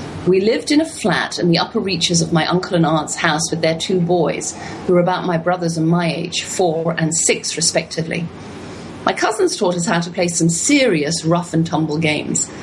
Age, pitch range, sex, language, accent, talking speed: 40-59, 160-180 Hz, female, English, British, 210 wpm